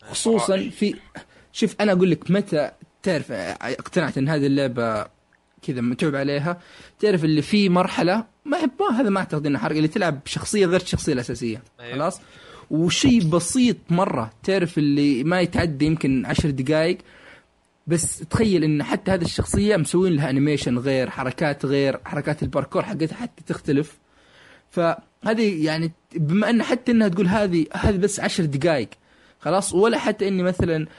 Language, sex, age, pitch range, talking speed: Arabic, male, 20-39, 135-180 Hz, 150 wpm